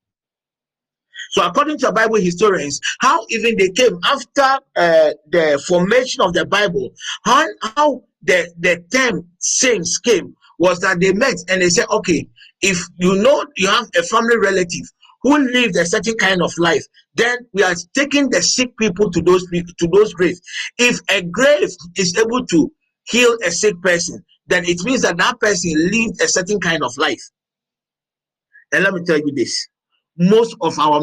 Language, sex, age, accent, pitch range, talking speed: English, male, 50-69, Nigerian, 175-235 Hz, 175 wpm